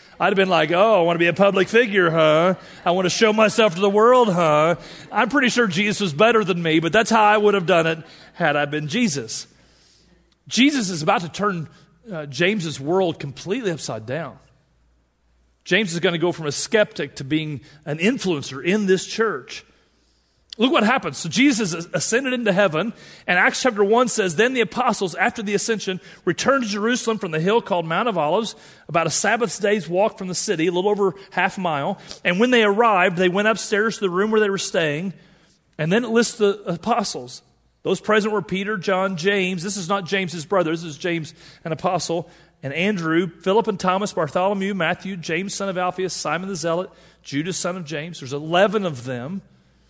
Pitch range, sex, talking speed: 165-210 Hz, male, 205 wpm